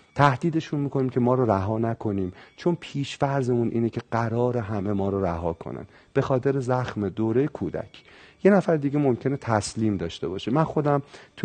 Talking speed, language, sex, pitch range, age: 170 wpm, Persian, male, 105-150 Hz, 40-59